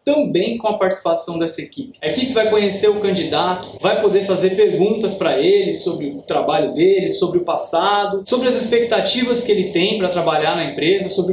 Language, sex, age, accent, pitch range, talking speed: Portuguese, male, 20-39, Brazilian, 180-215 Hz, 190 wpm